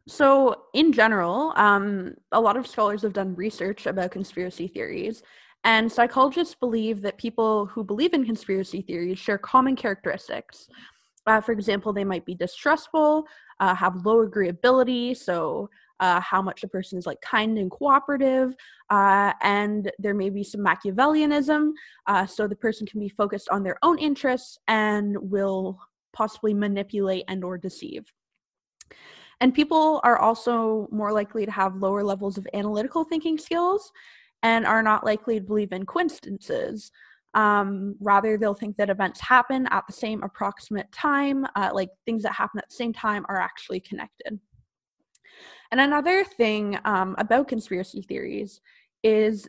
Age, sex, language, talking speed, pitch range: 20-39, female, English, 155 wpm, 195-250 Hz